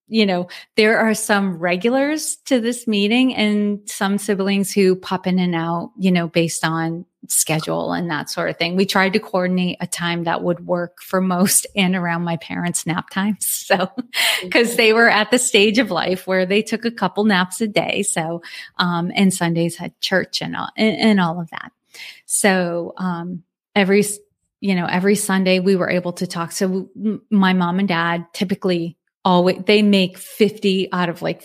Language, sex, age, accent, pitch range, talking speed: English, female, 30-49, American, 175-205 Hz, 190 wpm